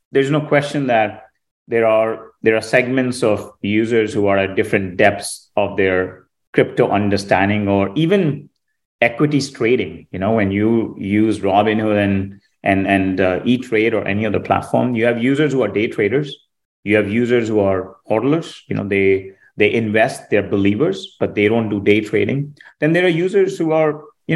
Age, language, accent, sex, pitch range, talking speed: 30-49, English, Indian, male, 100-140 Hz, 180 wpm